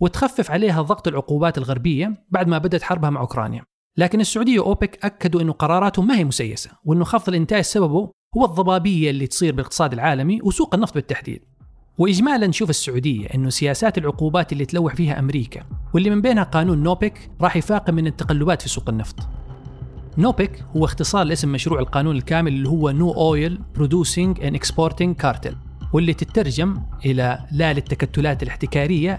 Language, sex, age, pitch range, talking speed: Arabic, male, 40-59, 140-185 Hz, 155 wpm